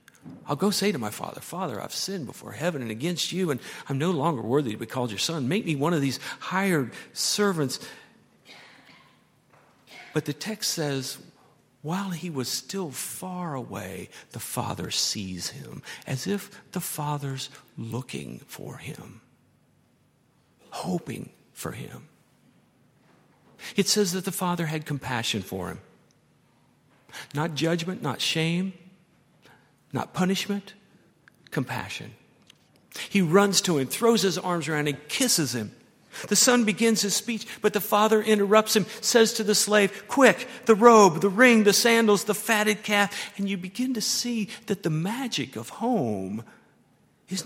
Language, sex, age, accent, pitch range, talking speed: English, male, 50-69, American, 145-210 Hz, 150 wpm